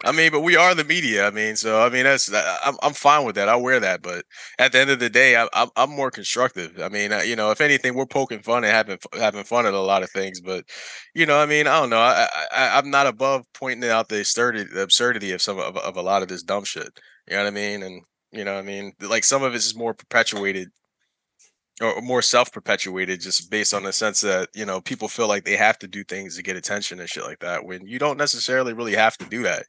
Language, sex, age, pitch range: English, male, 20-39, 100-125 Hz